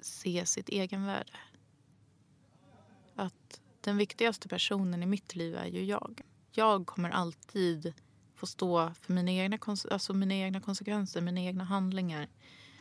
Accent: Swedish